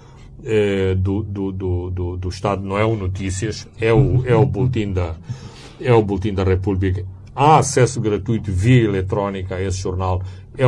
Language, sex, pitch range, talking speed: Portuguese, male, 100-125 Hz, 165 wpm